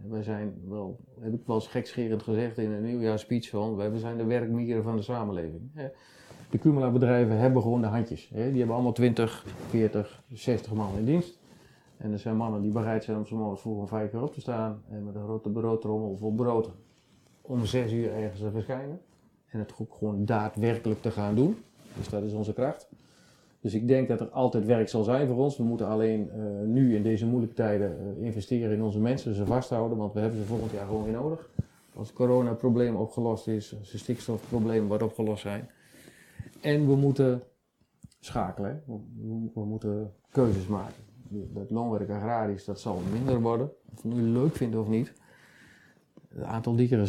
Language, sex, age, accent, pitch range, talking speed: Dutch, male, 40-59, Dutch, 105-125 Hz, 190 wpm